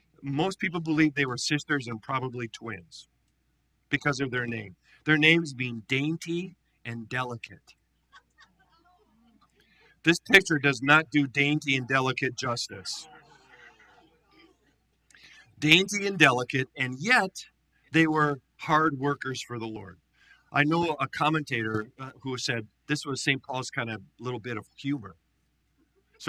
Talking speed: 130 wpm